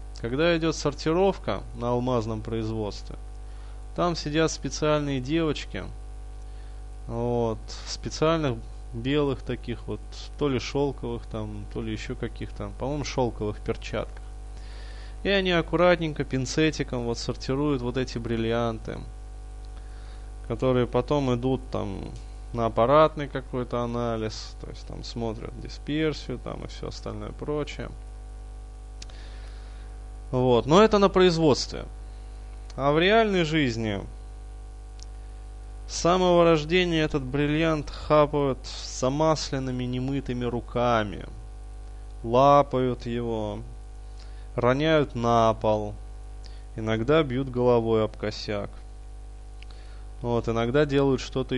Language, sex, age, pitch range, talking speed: Russian, male, 20-39, 105-140 Hz, 95 wpm